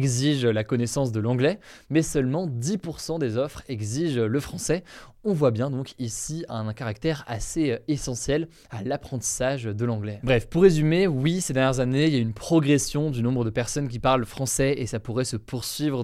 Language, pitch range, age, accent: French, 120-150 Hz, 20-39, French